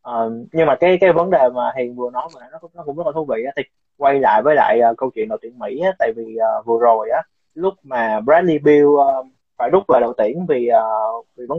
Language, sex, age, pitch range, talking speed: Vietnamese, male, 20-39, 125-175 Hz, 270 wpm